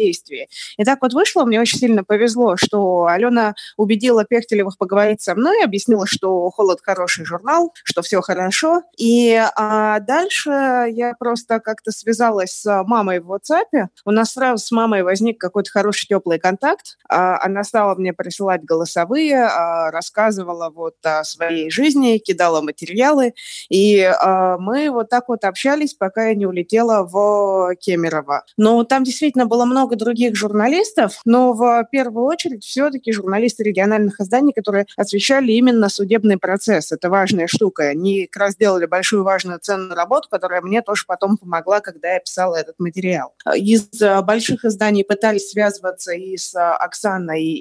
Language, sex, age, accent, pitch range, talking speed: Russian, female, 20-39, native, 185-240 Hz, 145 wpm